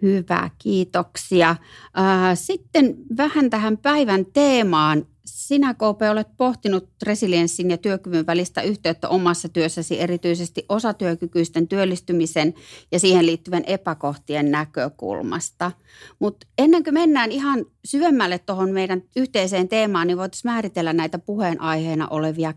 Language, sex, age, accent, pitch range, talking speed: Finnish, female, 30-49, native, 165-205 Hz, 110 wpm